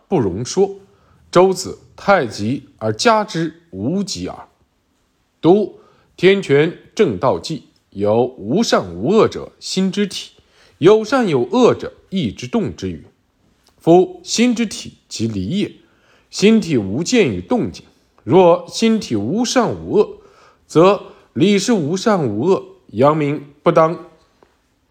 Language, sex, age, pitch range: Chinese, male, 50-69, 125-190 Hz